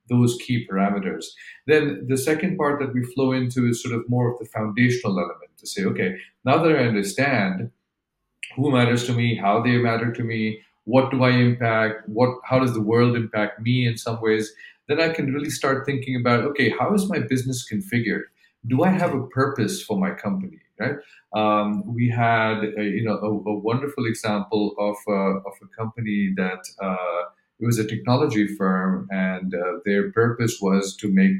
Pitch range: 105-130 Hz